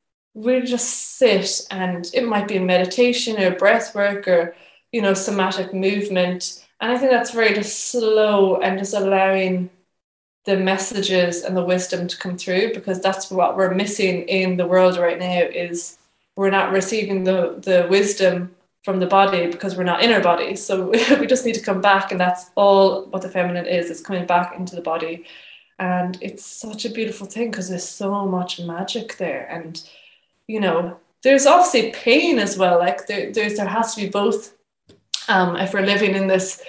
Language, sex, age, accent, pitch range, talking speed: English, female, 20-39, British, 180-200 Hz, 190 wpm